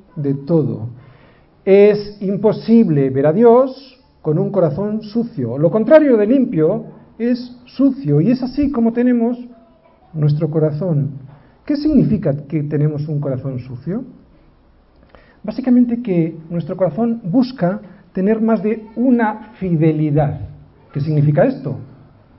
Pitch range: 140-230 Hz